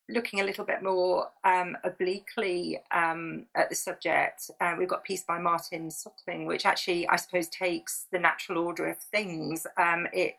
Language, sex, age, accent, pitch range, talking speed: English, female, 40-59, British, 170-195 Hz, 180 wpm